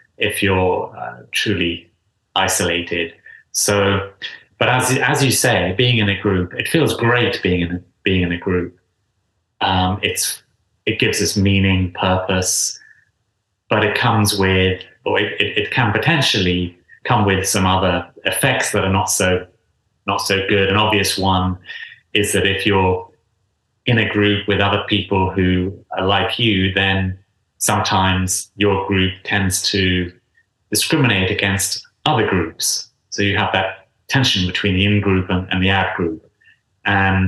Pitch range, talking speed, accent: 95-105 Hz, 150 wpm, British